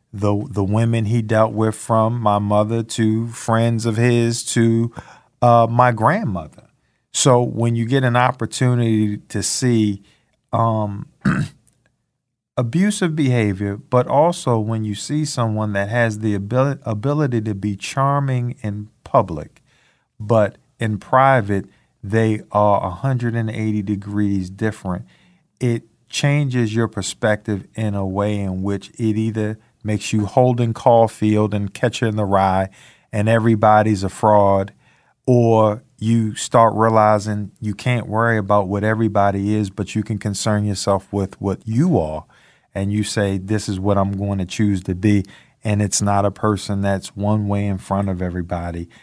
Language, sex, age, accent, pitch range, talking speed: English, male, 50-69, American, 100-115 Hz, 145 wpm